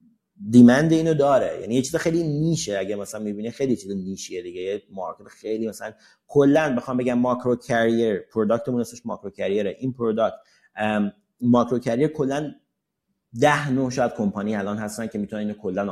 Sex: male